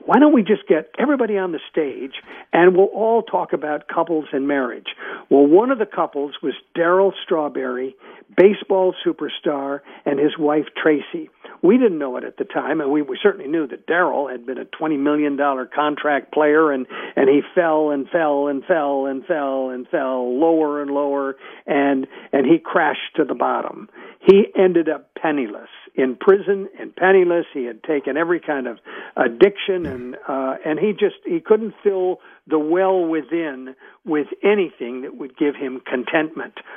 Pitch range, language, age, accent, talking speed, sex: 145-210 Hz, English, 50-69, American, 175 wpm, male